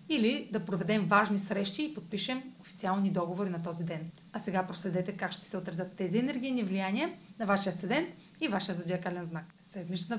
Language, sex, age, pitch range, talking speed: Bulgarian, female, 30-49, 185-230 Hz, 175 wpm